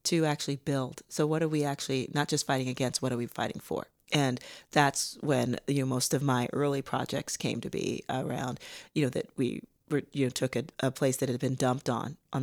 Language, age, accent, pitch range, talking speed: English, 40-59, American, 125-150 Hz, 230 wpm